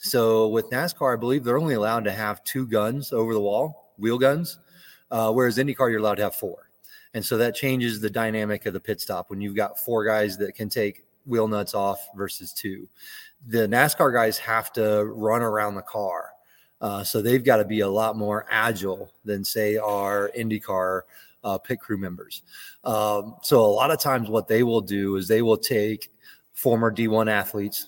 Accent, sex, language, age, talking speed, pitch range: American, male, English, 20-39, 200 wpm, 105-120 Hz